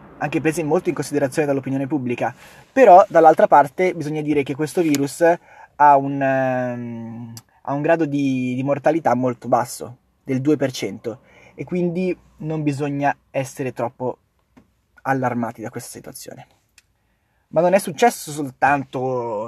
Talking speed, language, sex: 130 wpm, Italian, male